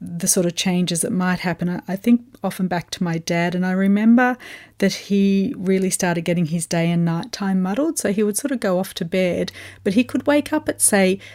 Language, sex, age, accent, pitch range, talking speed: English, female, 40-59, Australian, 180-205 Hz, 235 wpm